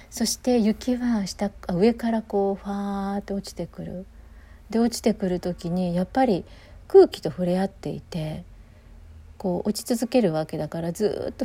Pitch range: 175-235 Hz